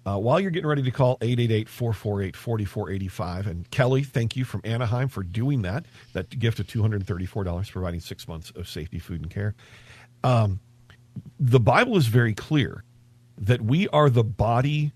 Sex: male